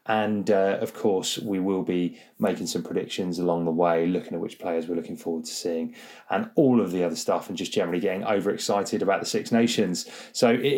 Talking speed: 215 wpm